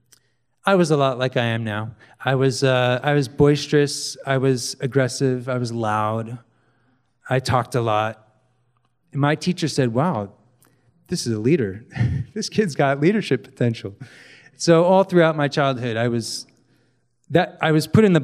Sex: male